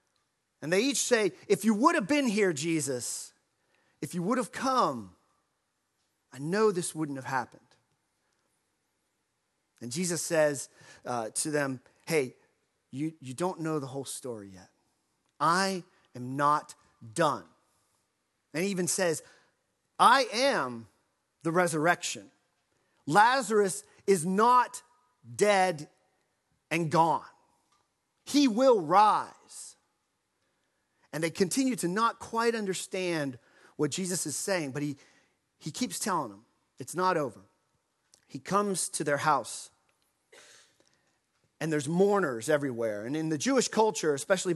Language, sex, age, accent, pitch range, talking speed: English, male, 40-59, American, 145-205 Hz, 125 wpm